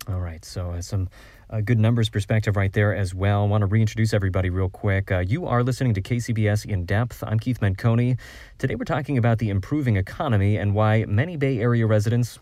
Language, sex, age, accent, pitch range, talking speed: English, male, 30-49, American, 100-120 Hz, 205 wpm